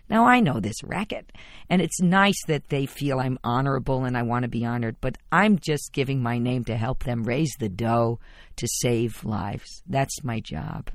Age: 50-69